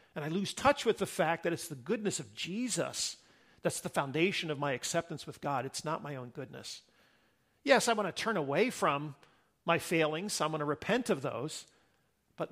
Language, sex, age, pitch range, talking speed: English, male, 50-69, 155-215 Hz, 205 wpm